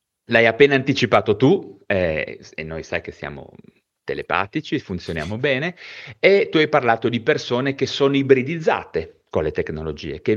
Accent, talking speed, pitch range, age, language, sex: native, 150 wpm, 105-165 Hz, 30-49, Italian, male